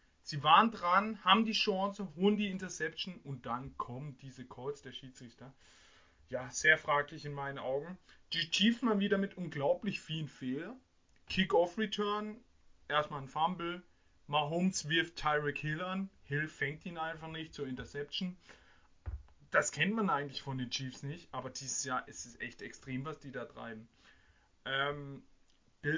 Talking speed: 150 wpm